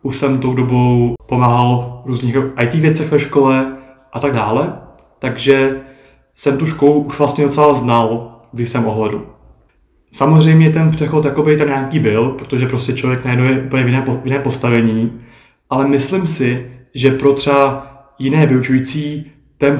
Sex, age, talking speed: male, 20-39, 150 wpm